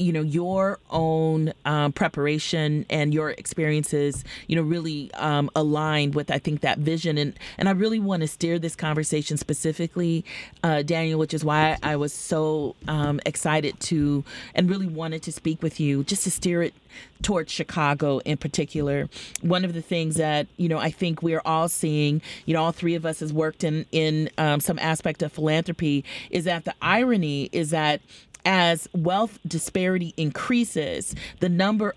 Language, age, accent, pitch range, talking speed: English, 30-49, American, 155-175 Hz, 180 wpm